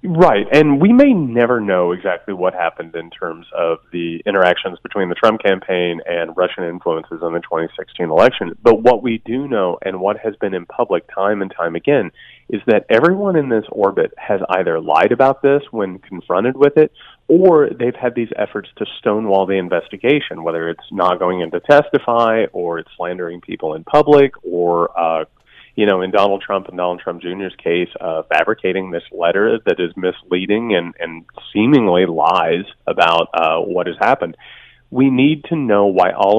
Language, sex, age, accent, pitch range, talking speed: English, male, 30-49, American, 90-130 Hz, 185 wpm